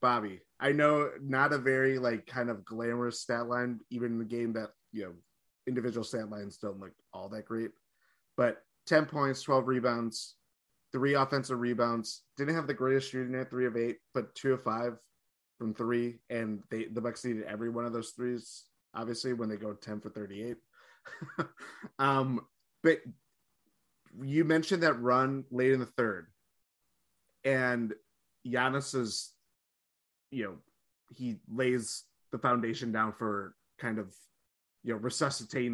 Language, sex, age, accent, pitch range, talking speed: English, male, 20-39, American, 115-135 Hz, 155 wpm